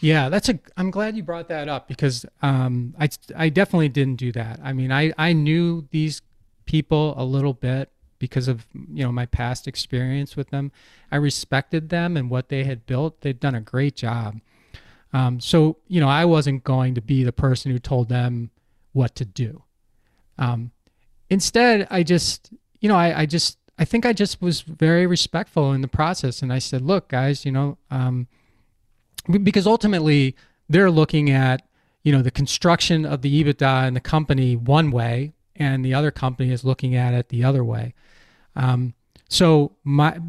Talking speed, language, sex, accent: 185 wpm, English, male, American